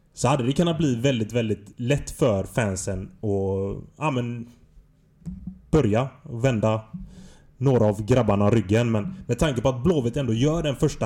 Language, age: Swedish, 30-49